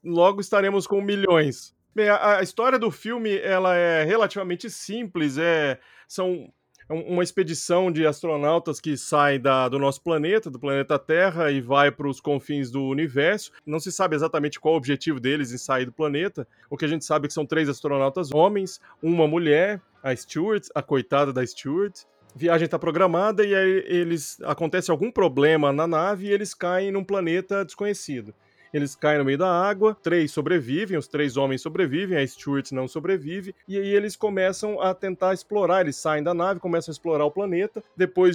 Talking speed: 185 wpm